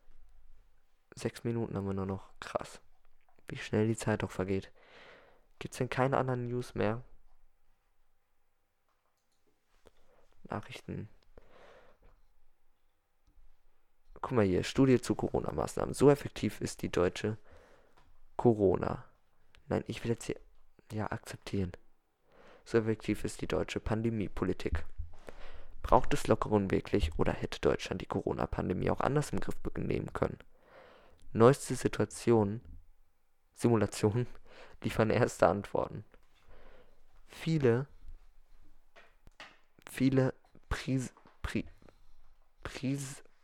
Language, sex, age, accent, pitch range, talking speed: German, male, 20-39, German, 95-125 Hz, 100 wpm